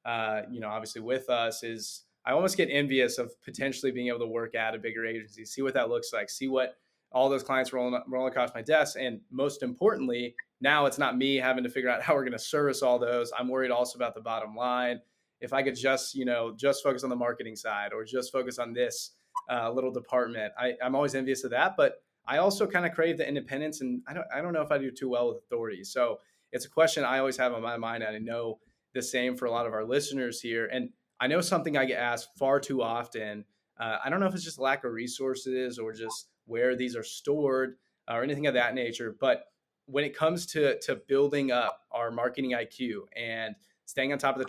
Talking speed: 240 wpm